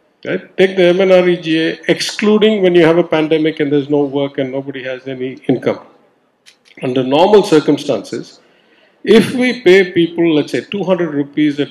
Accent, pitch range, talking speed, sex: Indian, 125-165 Hz, 155 wpm, male